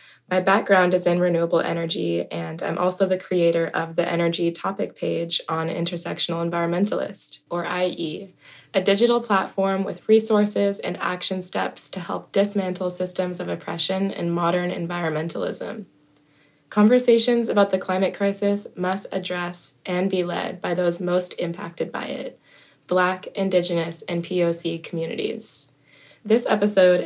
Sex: female